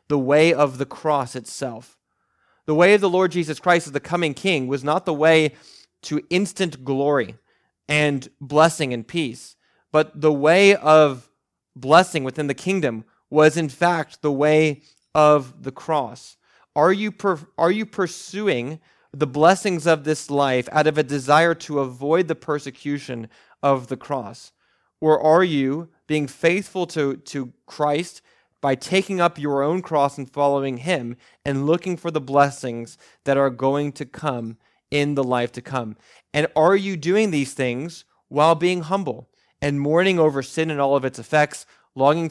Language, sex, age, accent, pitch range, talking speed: English, male, 30-49, American, 135-160 Hz, 165 wpm